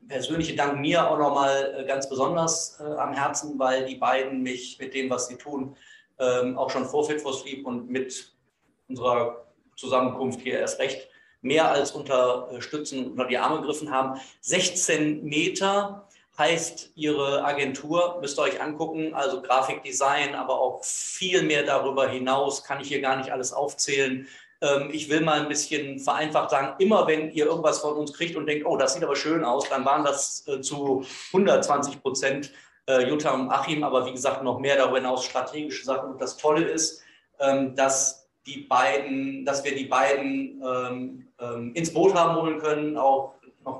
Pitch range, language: 130-150 Hz, German